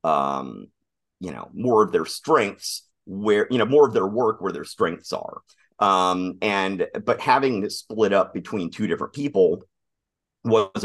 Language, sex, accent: English, male, American